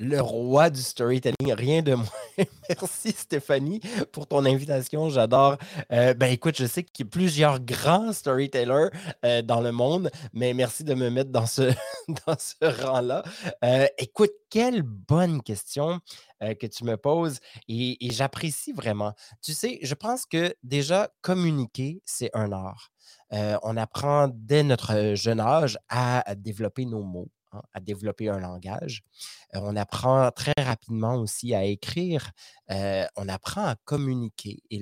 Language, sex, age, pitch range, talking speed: French, male, 30-49, 110-150 Hz, 155 wpm